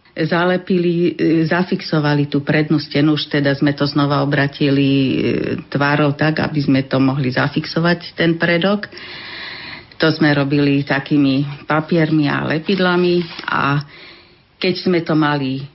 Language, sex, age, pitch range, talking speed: Slovak, female, 50-69, 145-165 Hz, 120 wpm